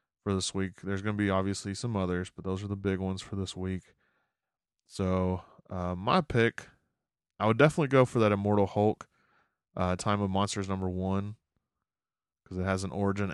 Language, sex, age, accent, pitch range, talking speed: English, male, 20-39, American, 95-110 Hz, 190 wpm